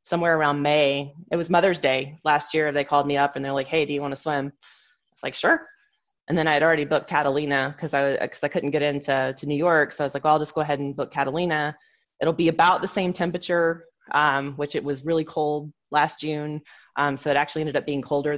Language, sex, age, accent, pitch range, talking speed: English, female, 20-39, American, 140-165 Hz, 250 wpm